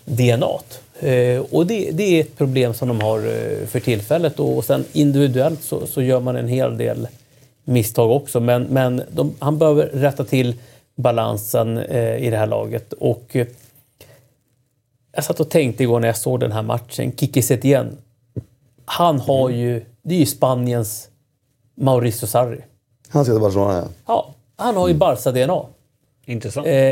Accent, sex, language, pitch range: native, male, Swedish, 120-145 Hz